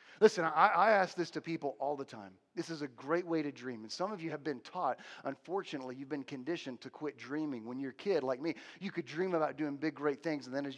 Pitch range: 130-175 Hz